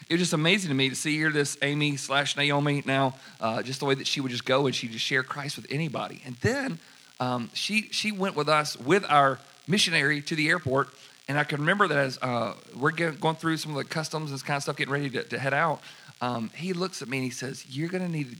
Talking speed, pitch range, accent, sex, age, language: 265 wpm, 125-165 Hz, American, male, 40-59, English